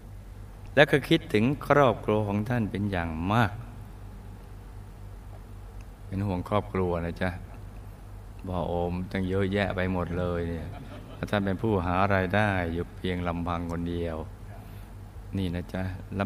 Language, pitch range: Thai, 90-100 Hz